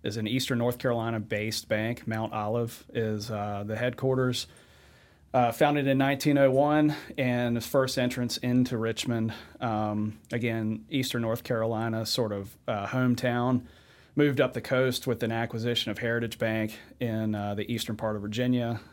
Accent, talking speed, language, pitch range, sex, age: American, 150 wpm, English, 105-125 Hz, male, 30-49